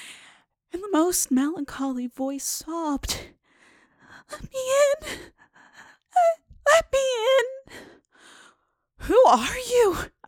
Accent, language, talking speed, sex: American, English, 90 wpm, female